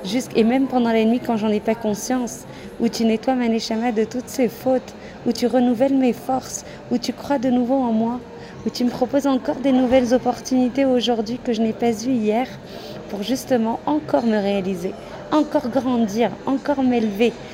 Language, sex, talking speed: French, female, 190 wpm